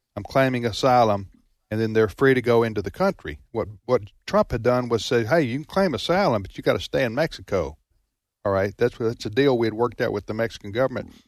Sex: male